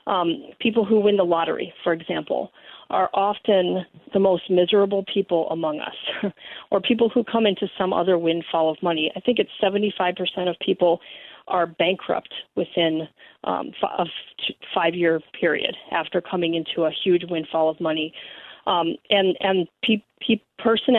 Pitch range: 175-210 Hz